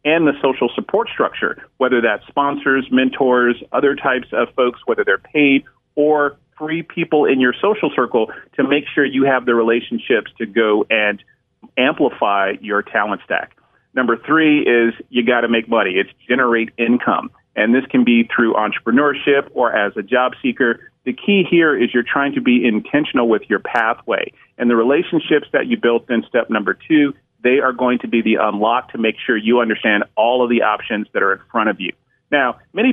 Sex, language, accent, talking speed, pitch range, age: male, English, American, 190 wpm, 120-145 Hz, 40-59